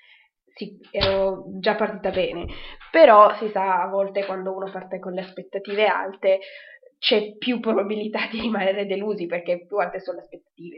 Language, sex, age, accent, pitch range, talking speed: Italian, female, 20-39, native, 185-205 Hz, 160 wpm